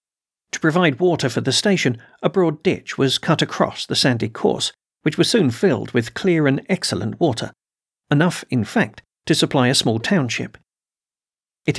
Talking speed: 170 wpm